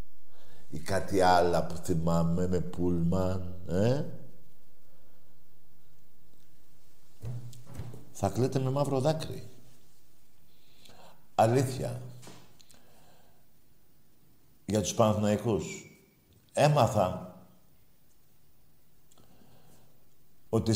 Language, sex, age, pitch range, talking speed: Greek, male, 60-79, 95-130 Hz, 50 wpm